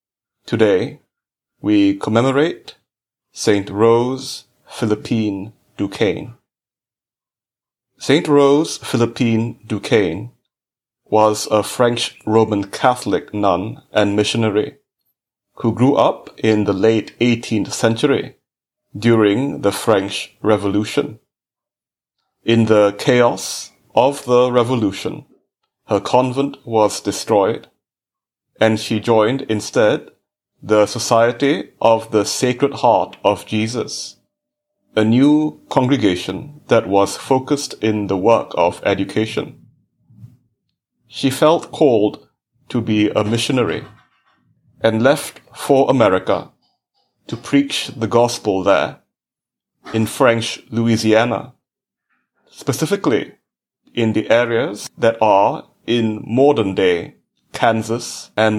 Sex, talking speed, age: male, 95 wpm, 30-49